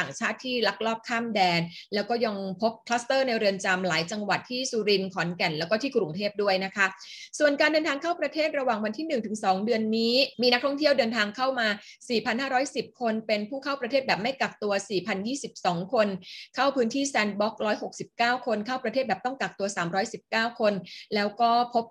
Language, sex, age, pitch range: Thai, female, 20-39, 195-255 Hz